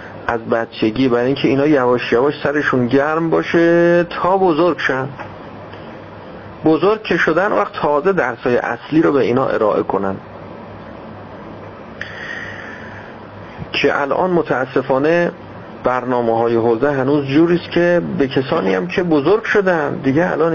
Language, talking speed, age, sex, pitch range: Persian, 125 wpm, 40-59, male, 115-170 Hz